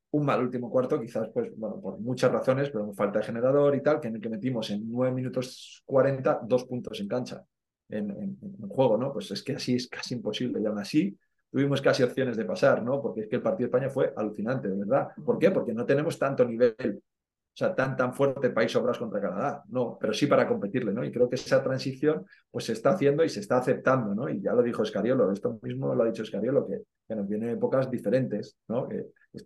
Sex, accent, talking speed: male, Spanish, 240 wpm